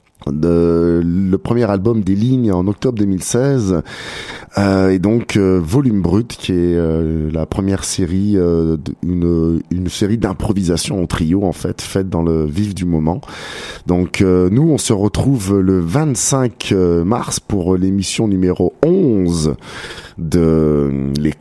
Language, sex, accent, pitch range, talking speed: French, male, French, 80-100 Hz, 145 wpm